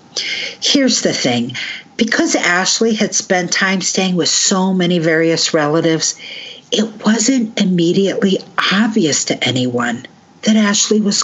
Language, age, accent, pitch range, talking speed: English, 50-69, American, 165-220 Hz, 125 wpm